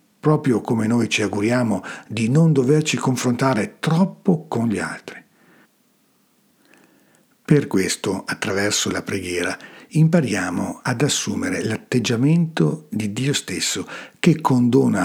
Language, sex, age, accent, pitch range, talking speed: Italian, male, 50-69, native, 105-145 Hz, 110 wpm